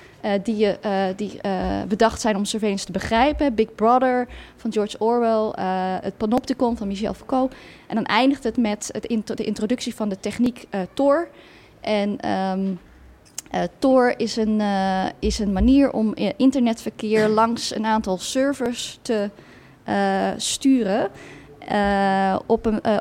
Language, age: Dutch, 20-39